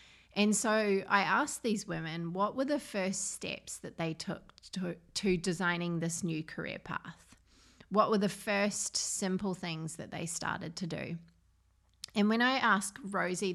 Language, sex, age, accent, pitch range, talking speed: English, female, 30-49, Australian, 170-195 Hz, 165 wpm